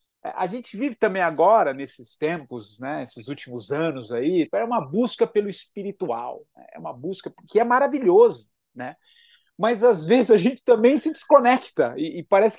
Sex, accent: male, Brazilian